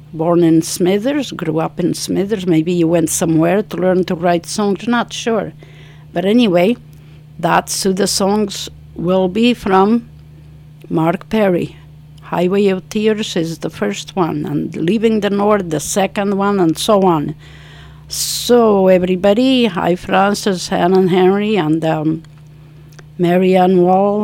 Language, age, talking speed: English, 50-69, 140 wpm